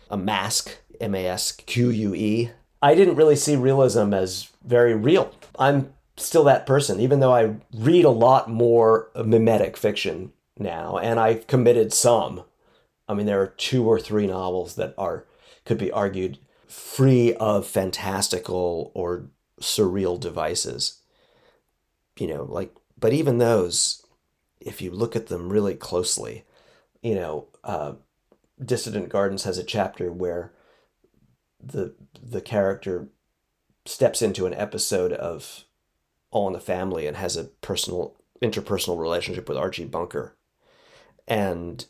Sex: male